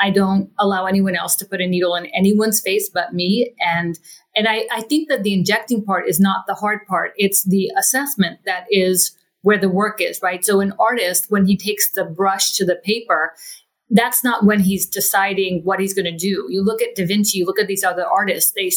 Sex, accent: female, American